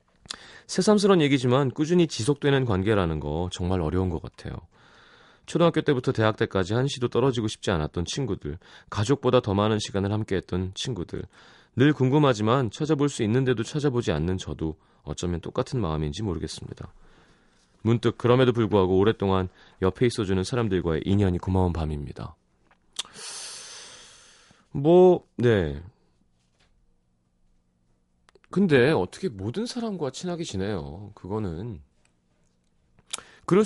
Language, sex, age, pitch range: Korean, male, 30-49, 80-135 Hz